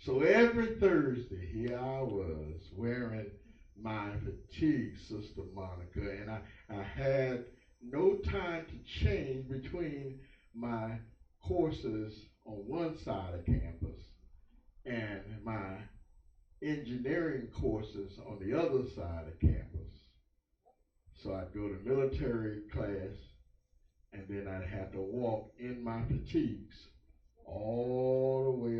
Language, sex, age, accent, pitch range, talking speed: English, male, 50-69, American, 90-115 Hz, 115 wpm